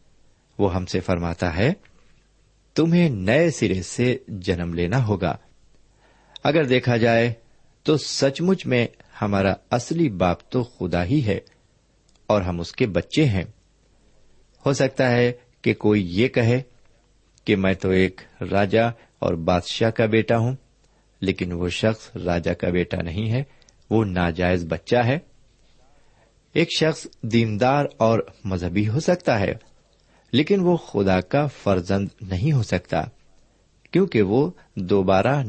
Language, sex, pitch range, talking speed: Urdu, male, 95-135 Hz, 135 wpm